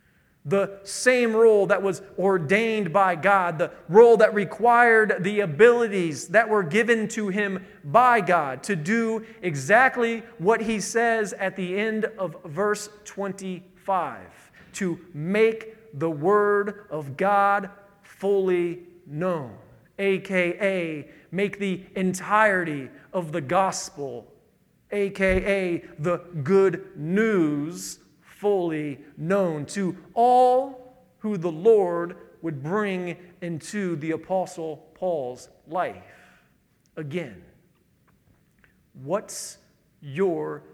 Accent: American